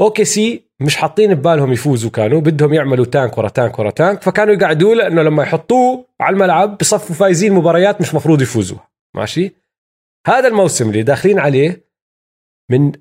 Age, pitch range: 30-49, 145-200 Hz